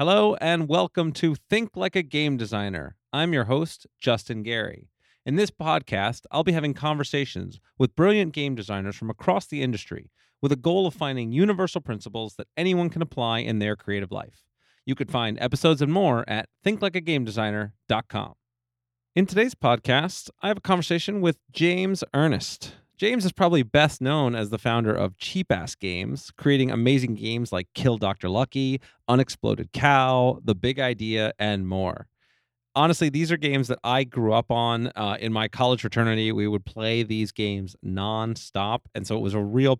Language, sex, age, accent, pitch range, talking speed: English, male, 30-49, American, 110-155 Hz, 170 wpm